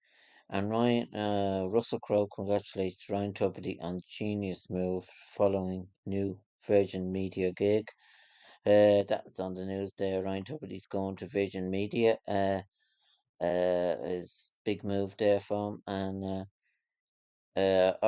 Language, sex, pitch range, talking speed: English, male, 95-105 Hz, 125 wpm